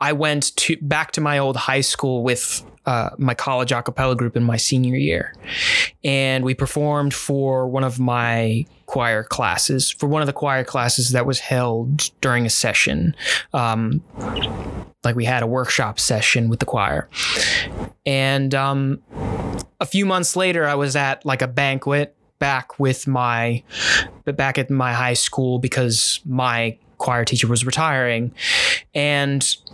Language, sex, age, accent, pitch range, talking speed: English, male, 20-39, American, 125-150 Hz, 155 wpm